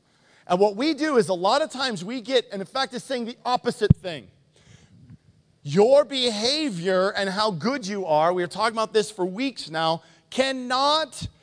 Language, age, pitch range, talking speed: English, 40-59, 180-305 Hz, 185 wpm